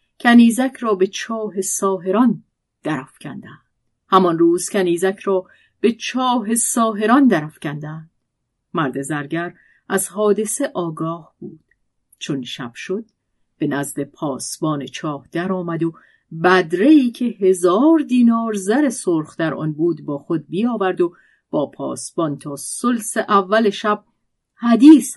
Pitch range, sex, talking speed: 155-225 Hz, female, 120 wpm